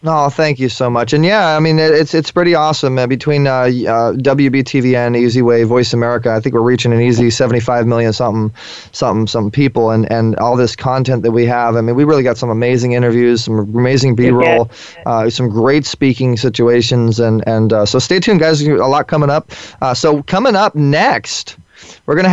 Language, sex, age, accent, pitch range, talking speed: English, male, 30-49, American, 120-150 Hz, 215 wpm